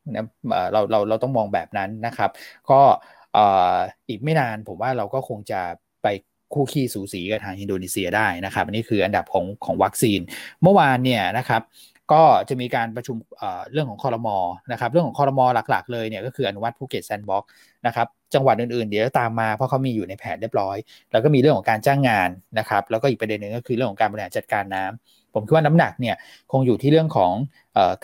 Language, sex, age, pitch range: Thai, male, 20-39, 110-135 Hz